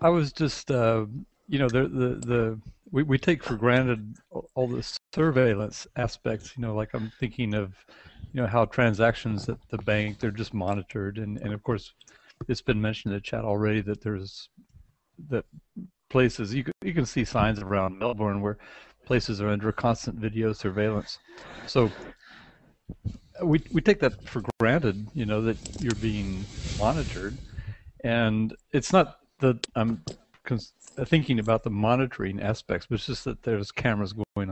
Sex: male